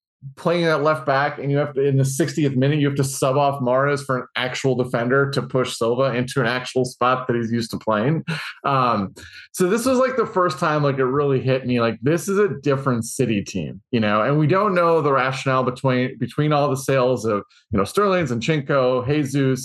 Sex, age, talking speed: male, 30-49, 225 wpm